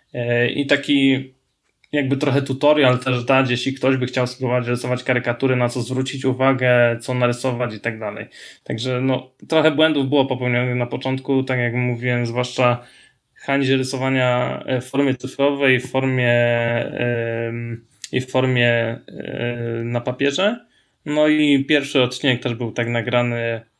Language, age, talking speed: Polish, 20-39, 145 wpm